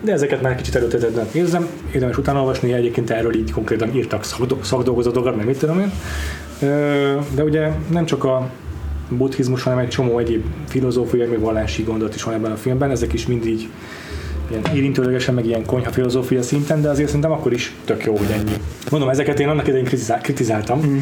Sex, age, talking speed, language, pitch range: male, 20-39, 185 wpm, Hungarian, 115-140 Hz